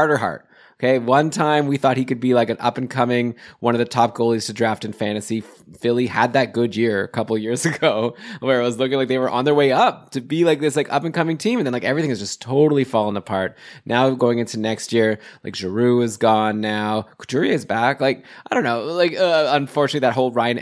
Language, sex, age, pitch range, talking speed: English, male, 20-39, 110-130 Hz, 255 wpm